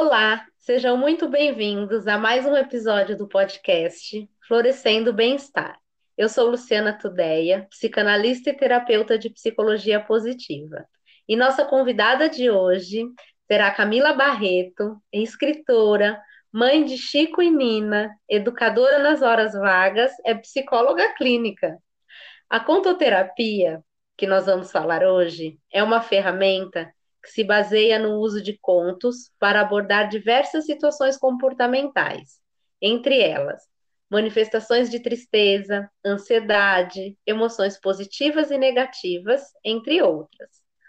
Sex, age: female, 20-39